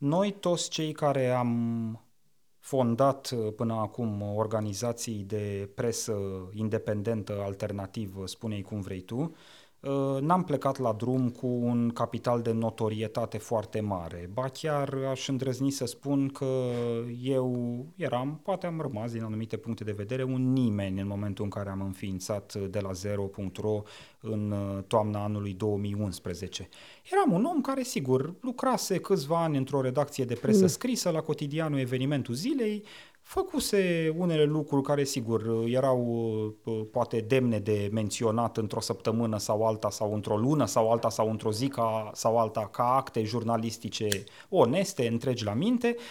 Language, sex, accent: Romanian, male, native